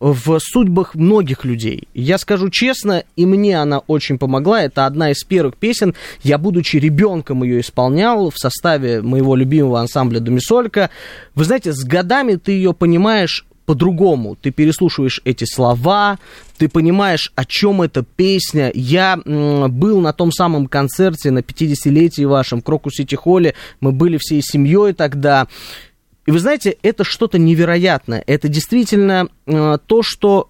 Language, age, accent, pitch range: Russian, 20-39, native, 140-195 Hz